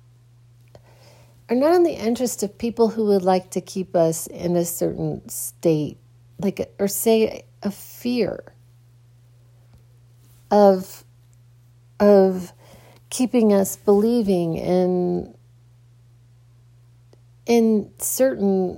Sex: female